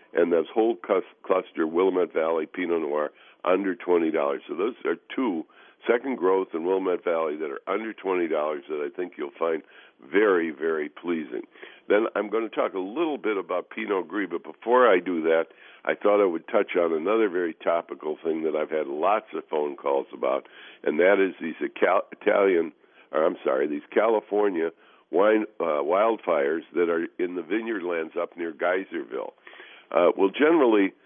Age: 60-79